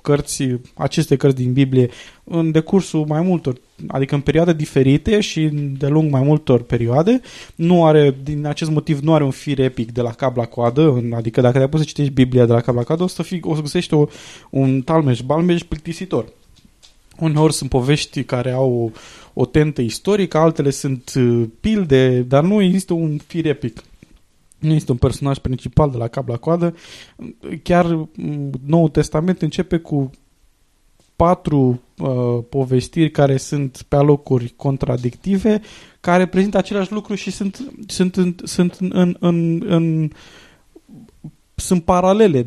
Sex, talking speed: male, 155 wpm